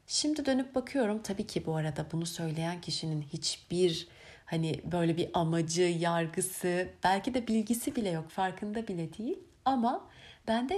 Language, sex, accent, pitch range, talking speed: Turkish, female, native, 175-240 Hz, 145 wpm